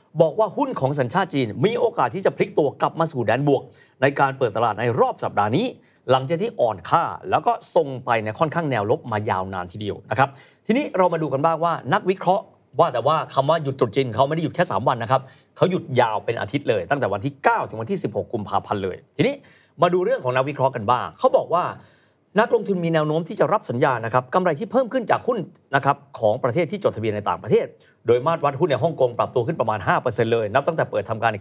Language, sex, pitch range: Thai, male, 125-175 Hz